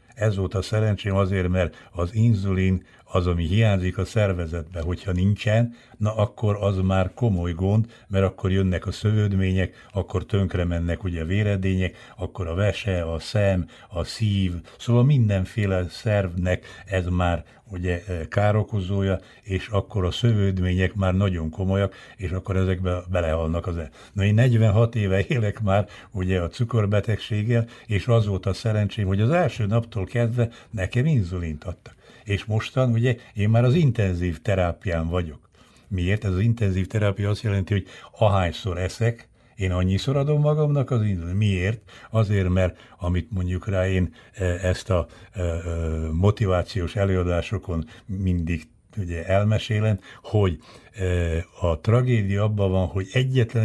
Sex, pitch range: male, 90-110 Hz